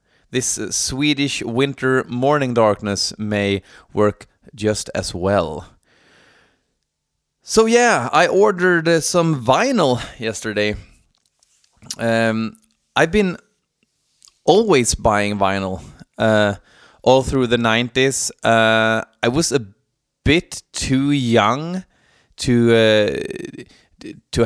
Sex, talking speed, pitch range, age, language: male, 100 wpm, 105-120 Hz, 20-39, Swedish